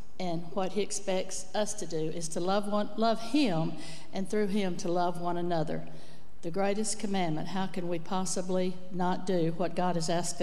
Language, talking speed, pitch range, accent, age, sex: English, 190 wpm, 175-195 Hz, American, 60-79, female